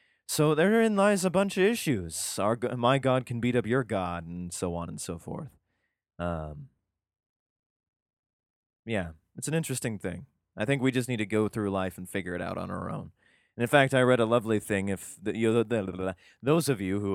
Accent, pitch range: American, 95-125 Hz